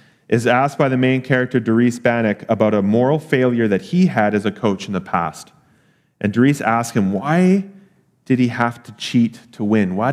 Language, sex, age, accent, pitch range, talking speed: English, male, 30-49, American, 105-130 Hz, 200 wpm